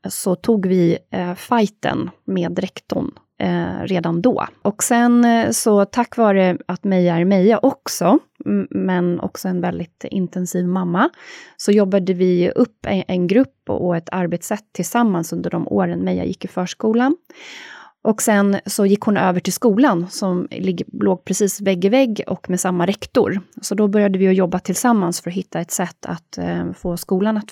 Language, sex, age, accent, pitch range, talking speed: Swedish, female, 30-49, native, 180-230 Hz, 165 wpm